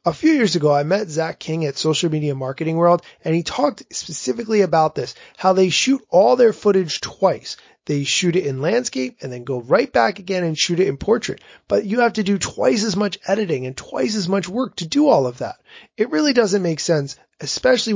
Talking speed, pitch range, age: 225 wpm, 150-210 Hz, 30-49